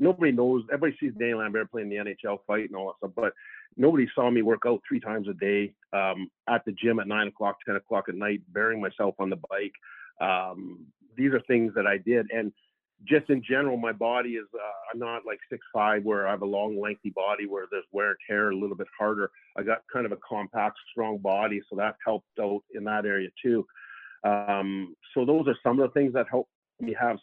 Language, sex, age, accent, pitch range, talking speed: English, male, 50-69, American, 105-130 Hz, 225 wpm